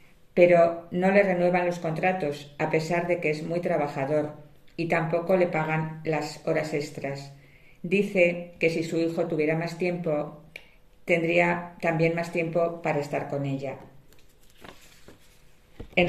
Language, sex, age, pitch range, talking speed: English, female, 50-69, 155-180 Hz, 140 wpm